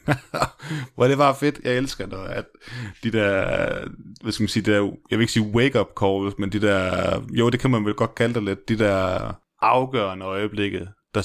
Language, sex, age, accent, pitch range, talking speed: English, male, 20-39, Danish, 95-120 Hz, 215 wpm